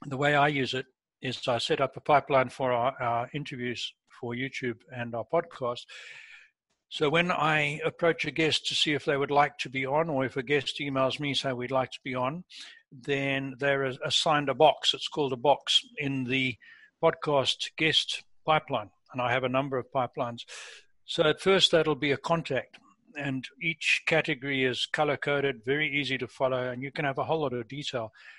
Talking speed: 200 wpm